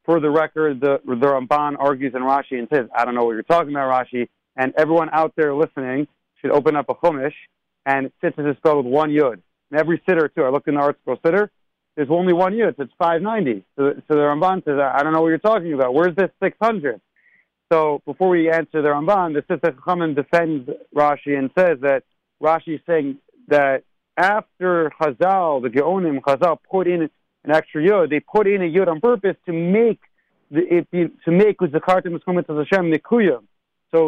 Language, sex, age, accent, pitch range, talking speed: English, male, 40-59, American, 140-175 Hz, 210 wpm